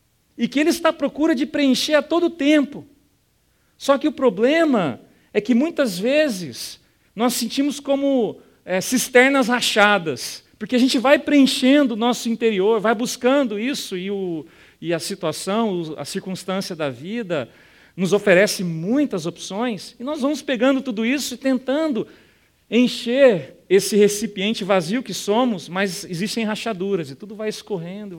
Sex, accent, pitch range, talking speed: male, Brazilian, 175-245 Hz, 145 wpm